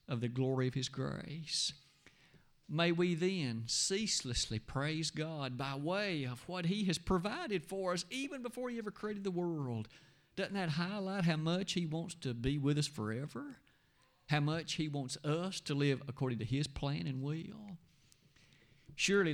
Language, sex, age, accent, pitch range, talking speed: English, male, 50-69, American, 135-180 Hz, 170 wpm